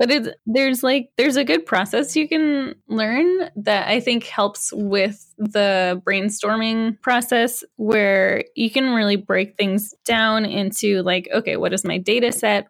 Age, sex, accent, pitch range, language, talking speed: 10-29, female, American, 195-230 Hz, English, 155 wpm